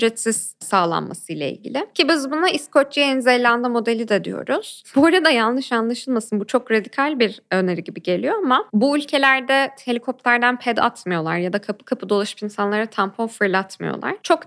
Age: 10-29